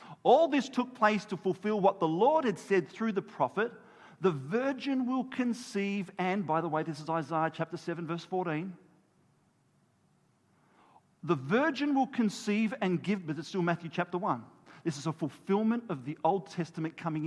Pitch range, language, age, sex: 180-255 Hz, English, 40-59, male